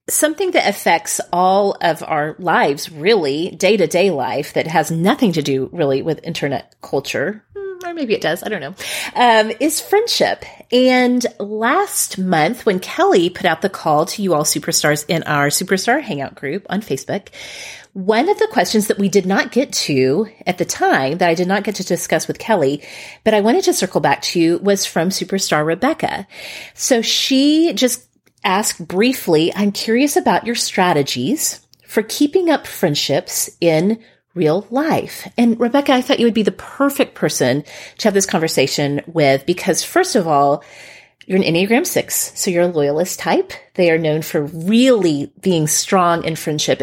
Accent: American